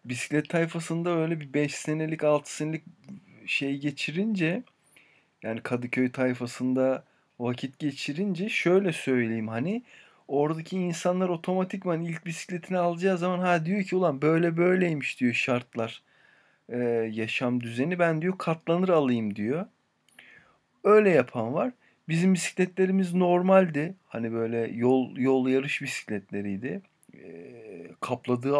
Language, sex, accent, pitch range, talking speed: Turkish, male, native, 125-180 Hz, 110 wpm